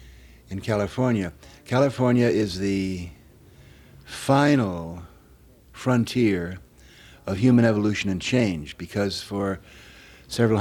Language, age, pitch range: German, 60-79, 95-120 Hz